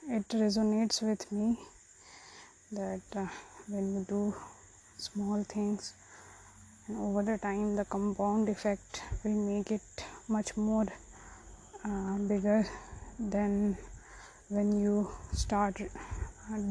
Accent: Indian